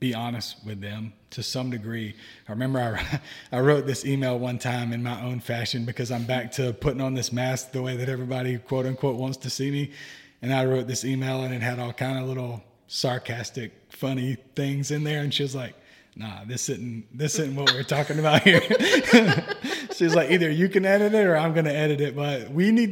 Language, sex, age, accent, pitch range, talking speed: English, male, 30-49, American, 115-145 Hz, 225 wpm